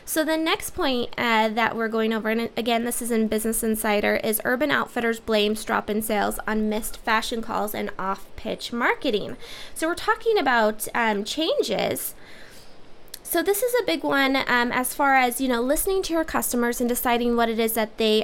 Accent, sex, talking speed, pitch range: American, female, 190 wpm, 215-260 Hz